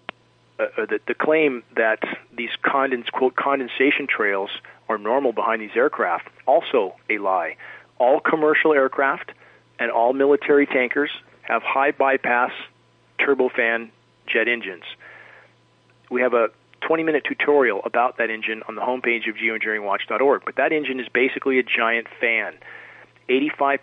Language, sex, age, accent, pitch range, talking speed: English, male, 40-59, American, 115-145 Hz, 130 wpm